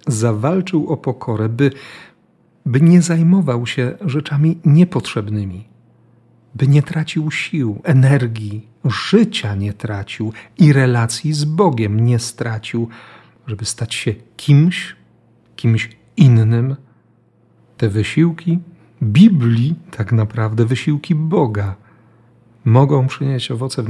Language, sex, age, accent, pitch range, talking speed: Polish, male, 40-59, native, 115-140 Hz, 105 wpm